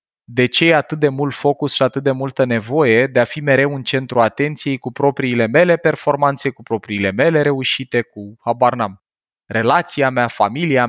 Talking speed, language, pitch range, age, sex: 180 wpm, Romanian, 115-150 Hz, 20-39, male